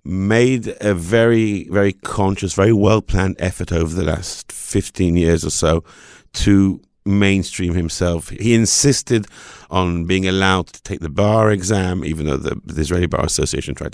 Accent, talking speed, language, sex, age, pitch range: British, 155 wpm, English, male, 50-69, 90-110 Hz